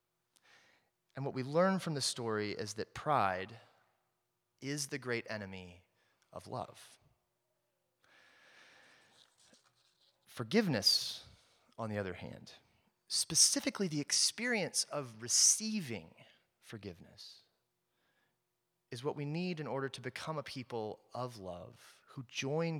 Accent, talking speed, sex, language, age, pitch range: American, 110 wpm, male, English, 30-49, 110-150 Hz